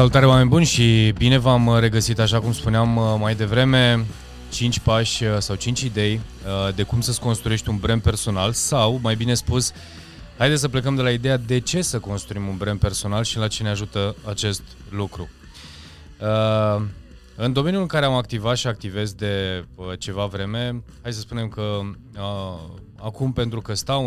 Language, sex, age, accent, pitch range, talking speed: Romanian, male, 20-39, native, 95-115 Hz, 165 wpm